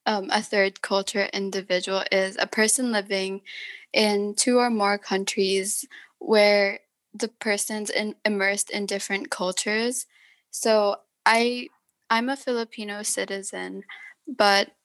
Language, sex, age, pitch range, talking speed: English, female, 10-29, 195-220 Hz, 110 wpm